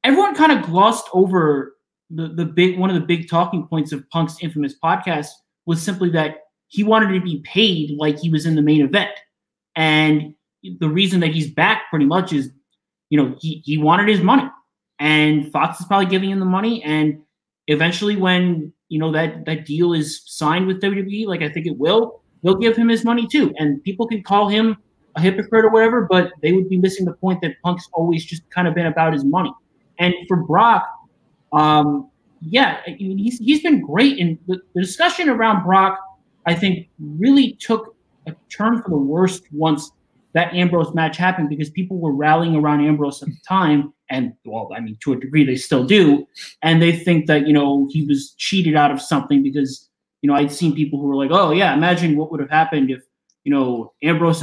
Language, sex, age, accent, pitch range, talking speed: English, male, 20-39, American, 150-190 Hz, 205 wpm